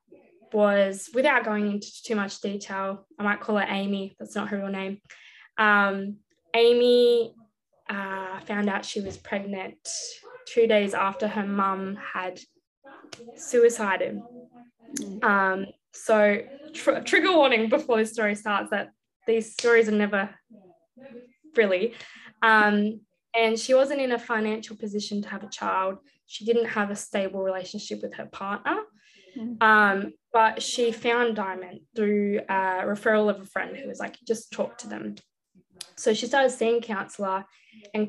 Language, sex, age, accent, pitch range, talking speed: English, female, 10-29, Australian, 200-235 Hz, 145 wpm